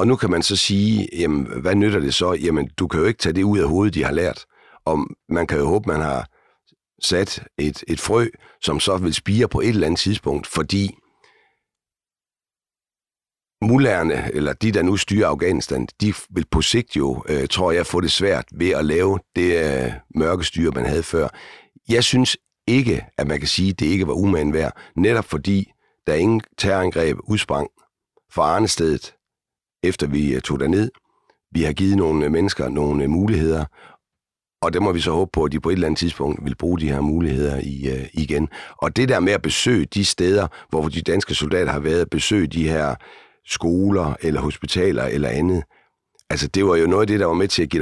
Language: Danish